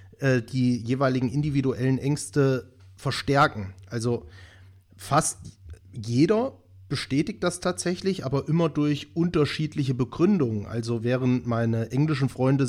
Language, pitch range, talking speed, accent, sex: German, 110-145 Hz, 100 wpm, German, male